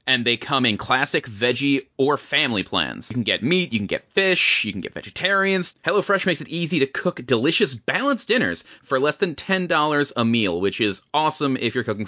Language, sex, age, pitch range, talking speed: English, male, 30-49, 120-200 Hz, 210 wpm